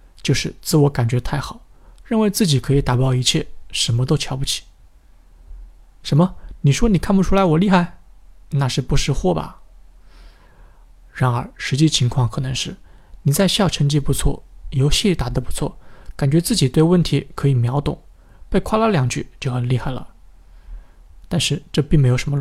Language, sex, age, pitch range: Chinese, male, 20-39, 125-165 Hz